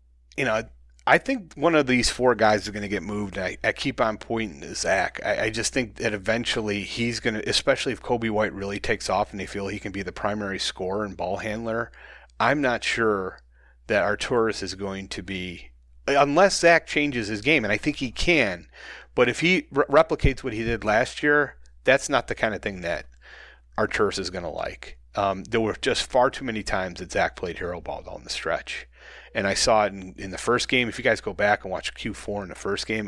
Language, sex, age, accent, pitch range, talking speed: English, male, 30-49, American, 100-120 Hz, 230 wpm